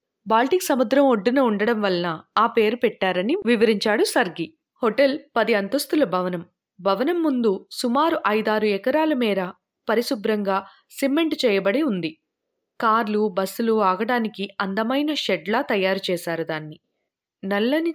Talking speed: 110 wpm